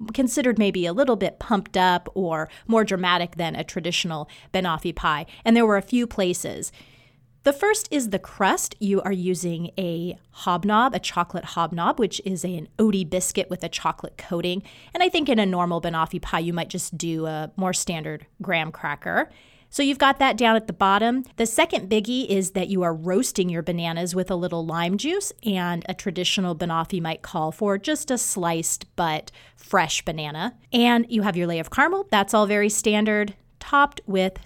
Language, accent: English, American